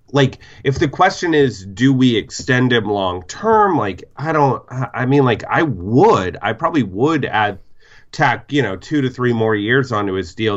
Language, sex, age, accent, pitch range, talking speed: English, male, 30-49, American, 95-130 Hz, 195 wpm